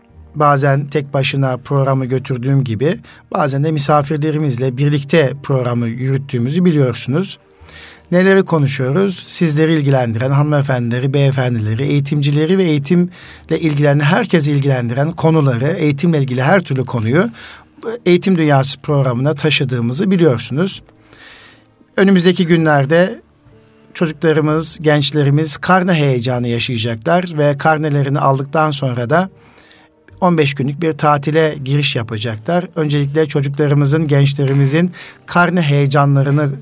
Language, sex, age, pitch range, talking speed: Turkish, male, 60-79, 135-165 Hz, 95 wpm